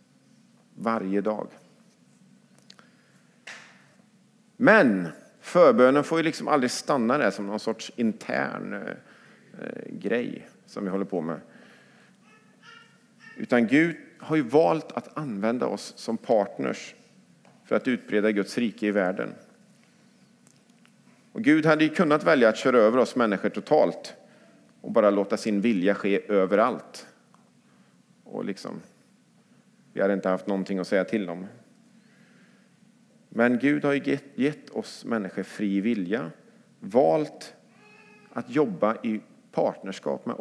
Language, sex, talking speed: English, male, 120 wpm